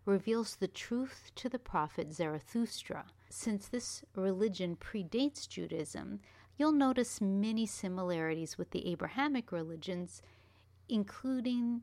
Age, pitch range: 40-59, 165-205 Hz